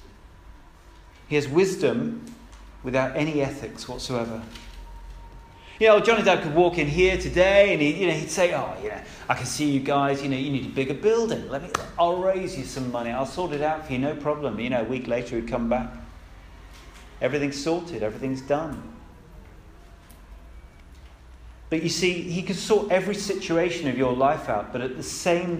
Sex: male